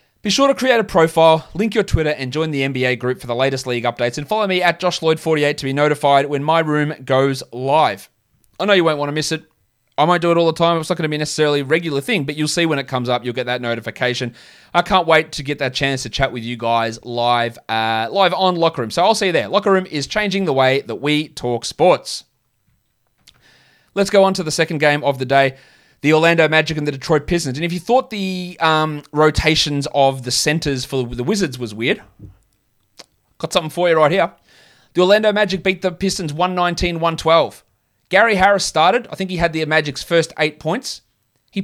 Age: 20-39